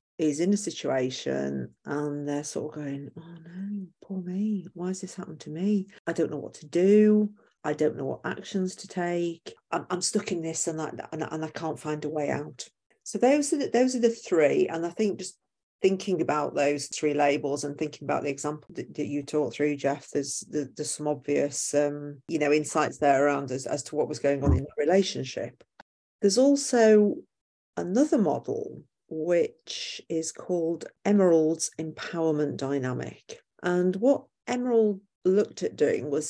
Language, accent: English, British